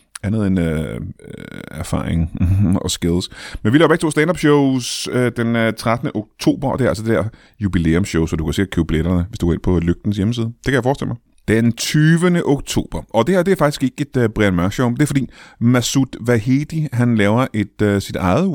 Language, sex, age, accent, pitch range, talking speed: Danish, male, 30-49, native, 95-135 Hz, 210 wpm